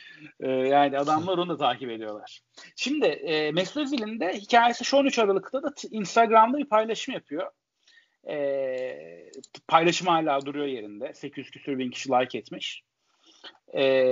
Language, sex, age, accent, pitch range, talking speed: Turkish, male, 40-59, native, 150-230 Hz, 135 wpm